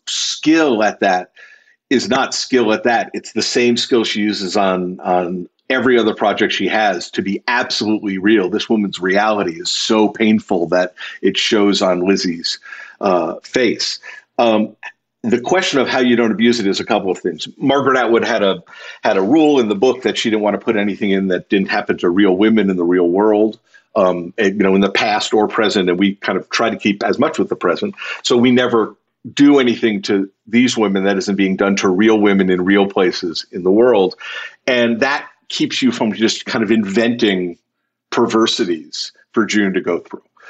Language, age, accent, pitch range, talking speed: English, 50-69, American, 100-125 Hz, 200 wpm